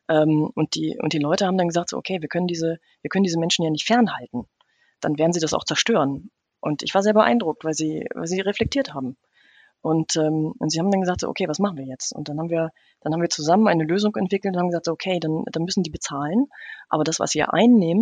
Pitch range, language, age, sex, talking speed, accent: 155-200 Hz, German, 30-49, female, 255 wpm, German